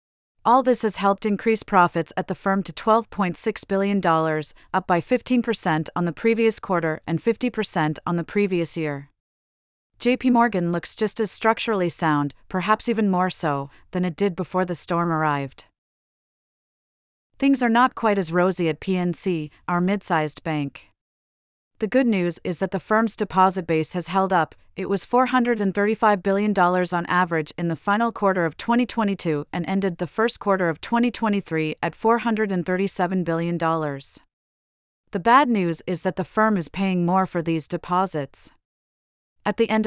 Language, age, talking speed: English, 30-49, 155 wpm